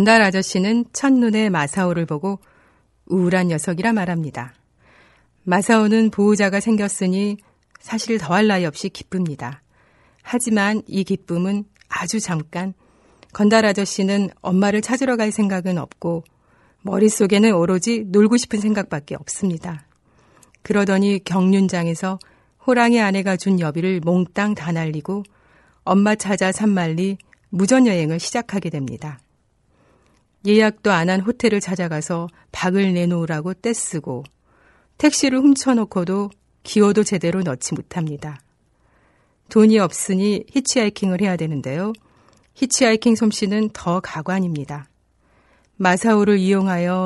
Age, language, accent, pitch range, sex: 40-59, Korean, native, 175-215 Hz, female